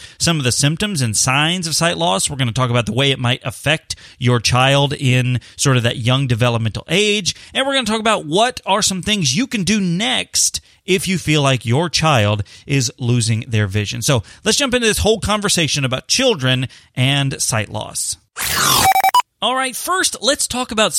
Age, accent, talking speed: 30-49, American, 195 wpm